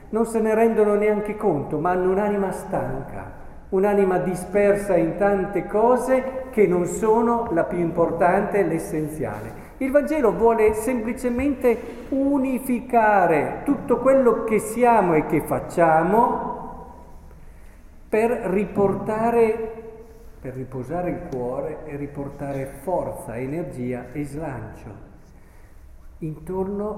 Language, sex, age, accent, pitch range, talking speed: Italian, male, 50-69, native, 145-225 Hz, 105 wpm